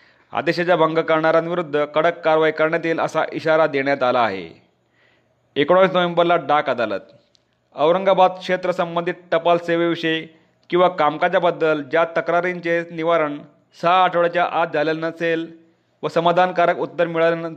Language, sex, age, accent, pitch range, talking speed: Marathi, male, 30-49, native, 155-175 Hz, 115 wpm